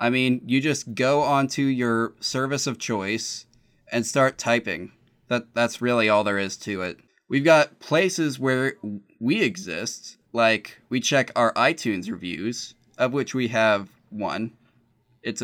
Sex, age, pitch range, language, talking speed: male, 20-39, 115-140 Hz, English, 150 wpm